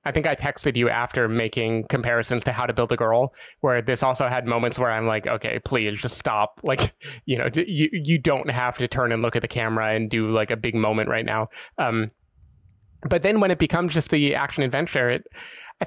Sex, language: male, English